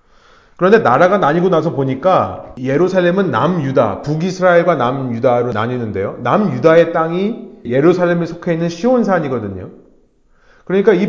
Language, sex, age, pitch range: Korean, male, 30-49, 145-190 Hz